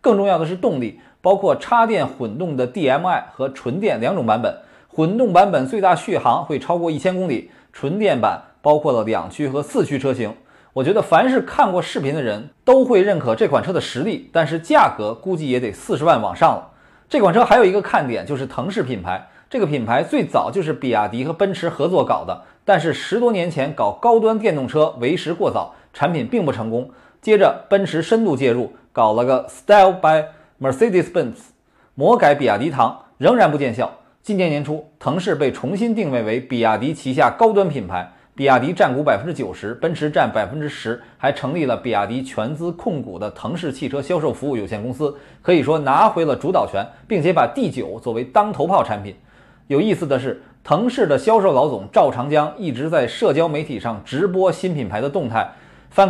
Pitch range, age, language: 130-190 Hz, 20-39, Chinese